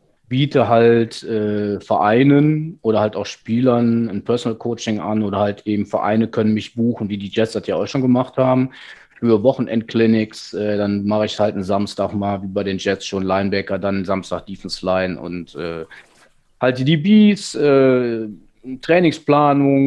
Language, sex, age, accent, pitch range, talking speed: German, male, 30-49, German, 105-130 Hz, 155 wpm